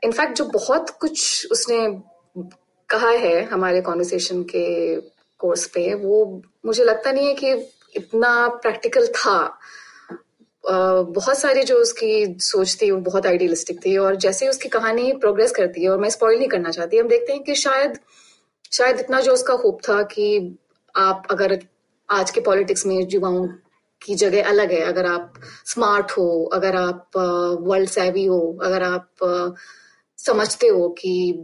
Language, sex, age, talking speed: Hindi, female, 20-39, 160 wpm